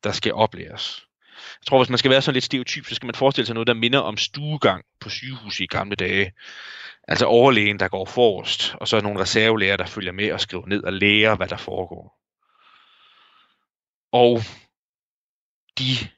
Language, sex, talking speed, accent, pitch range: Danish, male, 180 wpm, native, 100-125 Hz